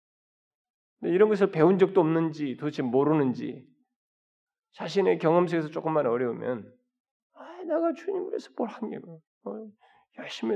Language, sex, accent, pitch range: Korean, male, native, 120-180 Hz